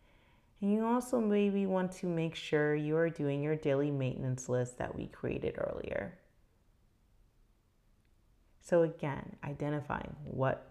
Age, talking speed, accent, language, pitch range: 30-49, 130 wpm, American, English, 135-170 Hz